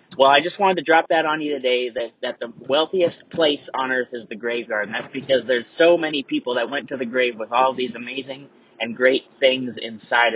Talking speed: 230 wpm